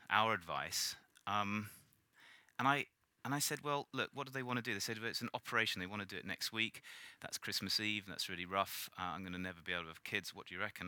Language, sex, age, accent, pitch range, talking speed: English, male, 30-49, British, 85-130 Hz, 270 wpm